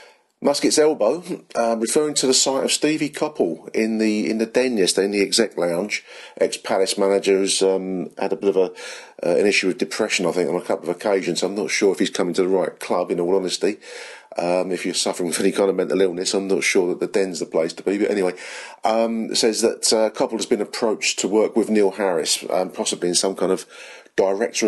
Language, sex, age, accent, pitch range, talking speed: English, male, 40-59, British, 95-130 Hz, 235 wpm